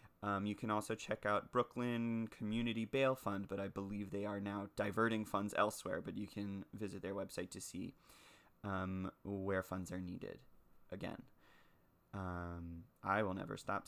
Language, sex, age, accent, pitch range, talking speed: English, male, 20-39, American, 95-110 Hz, 165 wpm